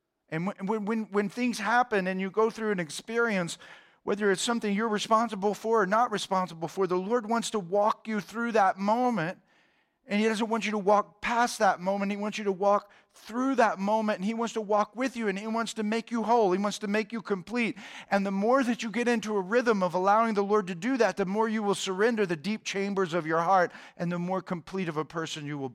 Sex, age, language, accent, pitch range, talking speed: male, 50-69, English, American, 165-220 Hz, 245 wpm